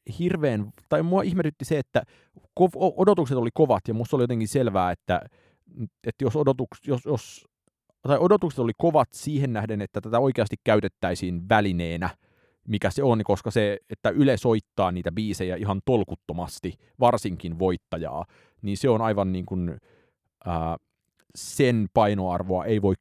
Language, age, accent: Finnish, 30-49, native